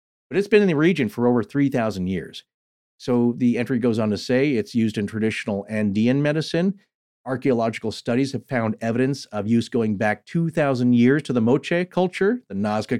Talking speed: 185 wpm